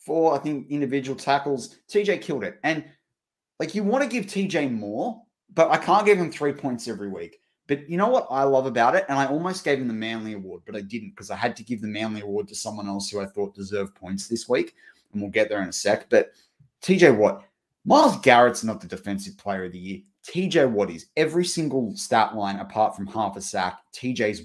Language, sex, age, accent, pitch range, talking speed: English, male, 20-39, Australian, 100-140 Hz, 230 wpm